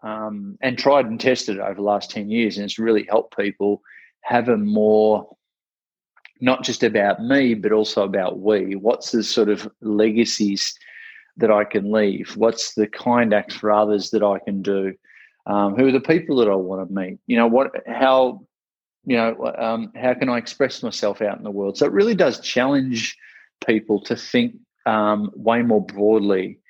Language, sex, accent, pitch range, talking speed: English, male, Australian, 105-125 Hz, 185 wpm